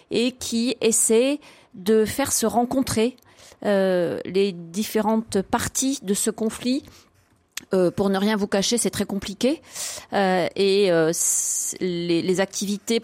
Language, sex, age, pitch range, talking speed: French, female, 30-49, 190-225 Hz, 140 wpm